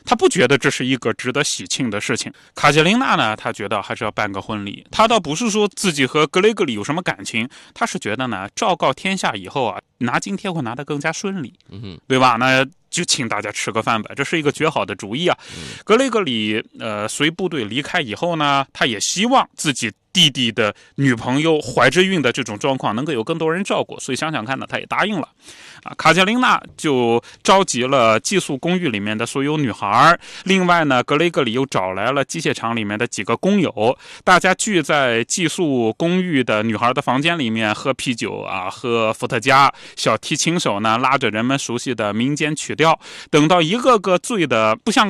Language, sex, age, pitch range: Chinese, male, 20-39, 115-170 Hz